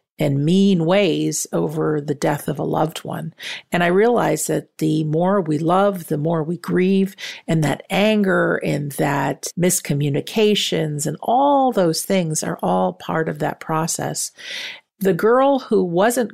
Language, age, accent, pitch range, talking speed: English, 50-69, American, 150-185 Hz, 155 wpm